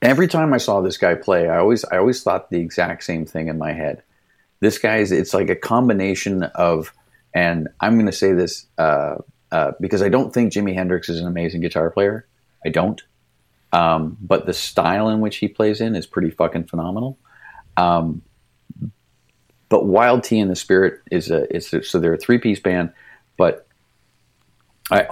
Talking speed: 180 wpm